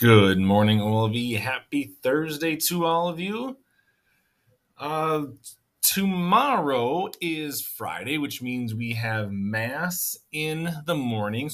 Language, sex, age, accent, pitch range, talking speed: English, male, 30-49, American, 115-155 Hz, 110 wpm